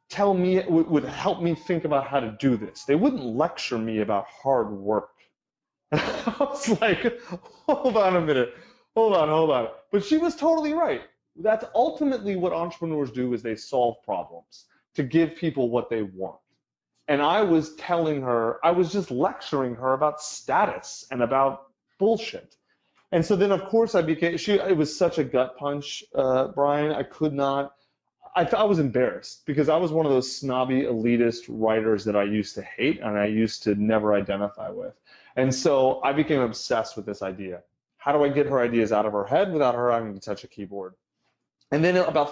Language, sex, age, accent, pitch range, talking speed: English, male, 30-49, American, 120-175 Hz, 190 wpm